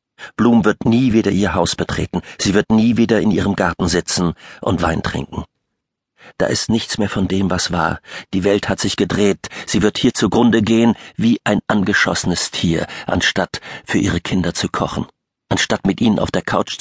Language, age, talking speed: German, 50-69, 185 wpm